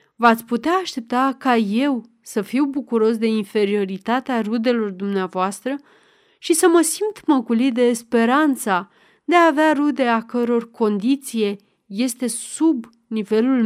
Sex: female